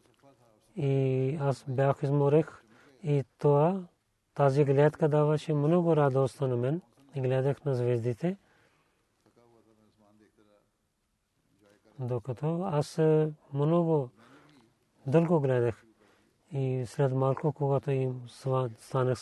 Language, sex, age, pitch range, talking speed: Bulgarian, male, 30-49, 125-150 Hz, 80 wpm